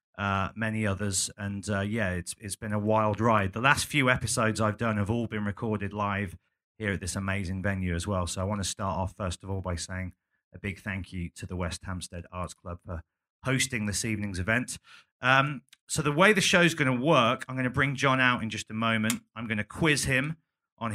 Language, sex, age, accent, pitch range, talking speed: English, male, 30-49, British, 95-120 Hz, 240 wpm